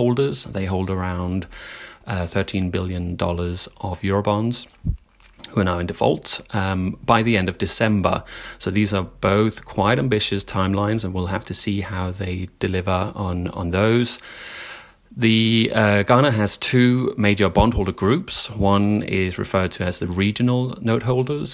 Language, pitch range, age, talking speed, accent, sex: English, 95-110 Hz, 30-49, 155 wpm, British, male